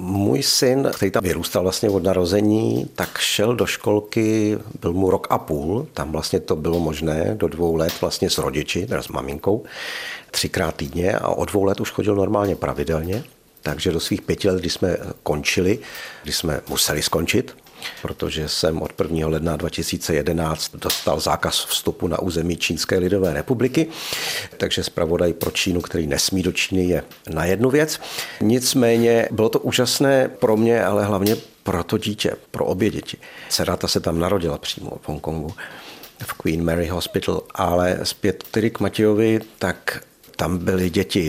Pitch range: 85-110 Hz